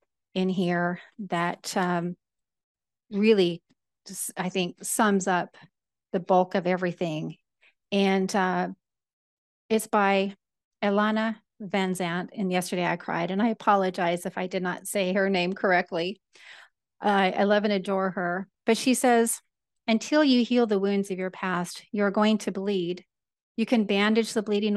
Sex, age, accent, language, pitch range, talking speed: female, 40-59, American, English, 180-210 Hz, 150 wpm